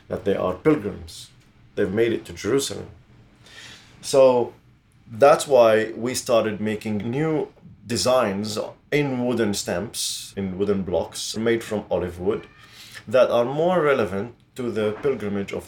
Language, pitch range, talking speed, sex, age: English, 100-120 Hz, 135 wpm, male, 30-49